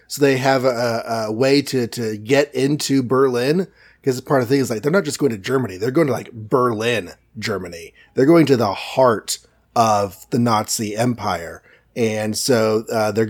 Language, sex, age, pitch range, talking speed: English, male, 30-49, 120-160 Hz, 195 wpm